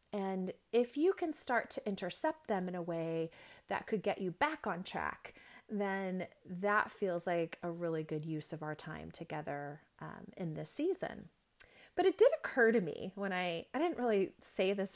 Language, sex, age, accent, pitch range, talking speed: English, female, 30-49, American, 170-230 Hz, 190 wpm